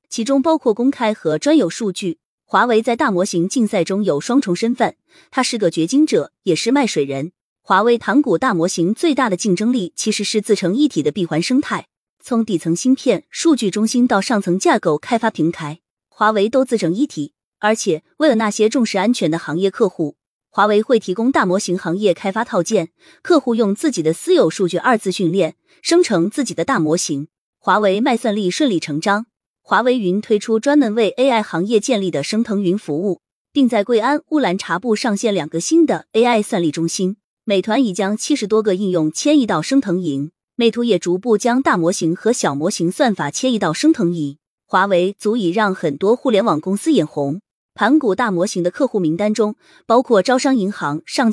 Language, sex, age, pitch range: Chinese, female, 20-39, 175-240 Hz